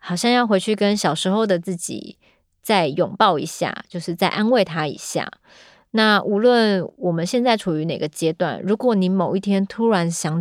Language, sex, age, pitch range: Chinese, female, 30-49, 165-200 Hz